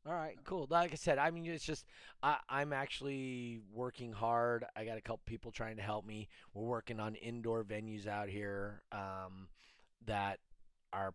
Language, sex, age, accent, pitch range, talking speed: English, male, 30-49, American, 105-130 Hz, 185 wpm